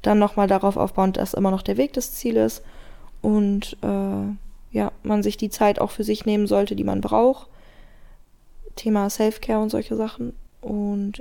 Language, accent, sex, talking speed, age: German, German, female, 175 wpm, 20-39